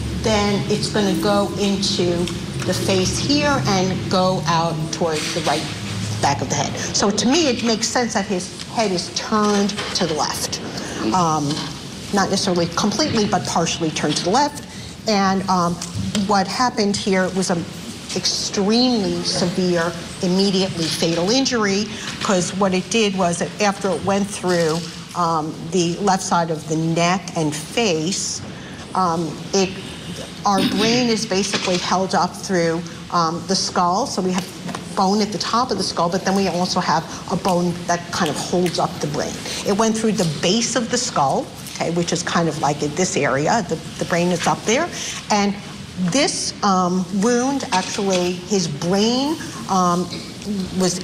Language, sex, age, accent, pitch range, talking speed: English, female, 50-69, American, 170-200 Hz, 165 wpm